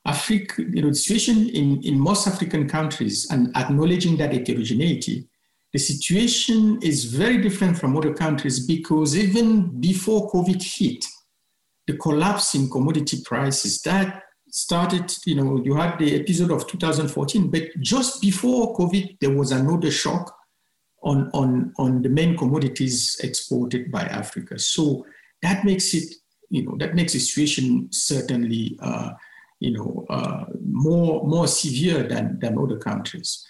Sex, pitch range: male, 135-185 Hz